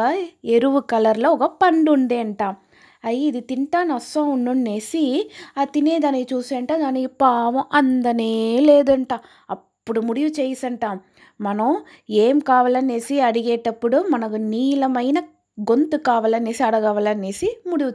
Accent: native